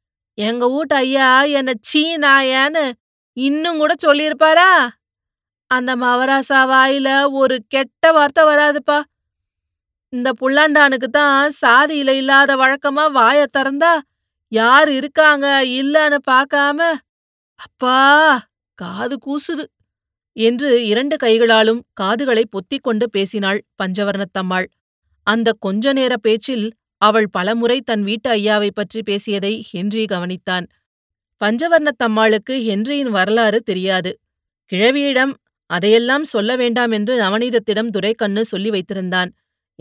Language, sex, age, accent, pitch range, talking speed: Tamil, female, 30-49, native, 205-270 Hz, 95 wpm